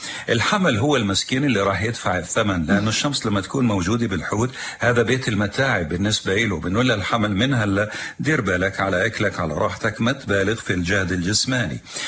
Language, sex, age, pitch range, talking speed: Arabic, male, 50-69, 95-120 Hz, 165 wpm